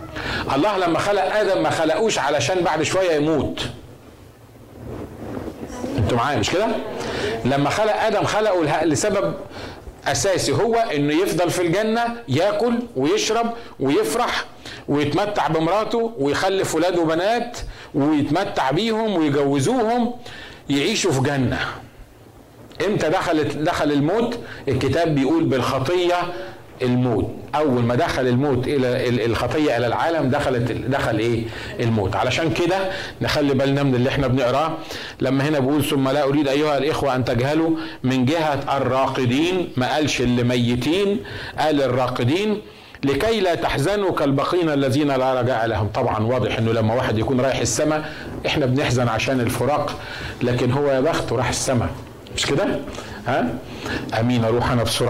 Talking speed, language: 130 wpm, Arabic